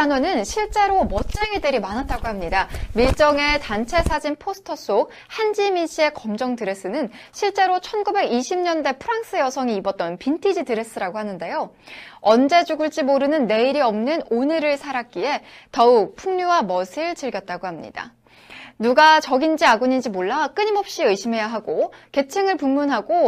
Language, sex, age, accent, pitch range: Korean, female, 20-39, native, 230-345 Hz